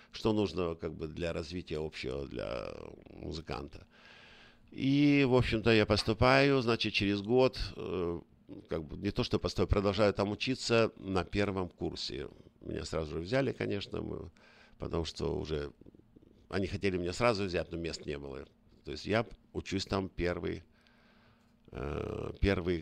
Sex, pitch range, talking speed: male, 85-105 Hz, 145 wpm